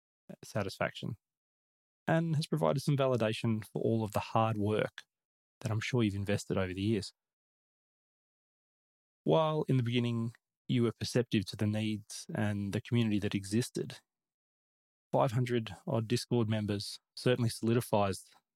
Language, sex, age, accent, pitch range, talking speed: English, male, 20-39, Australian, 100-120 Hz, 135 wpm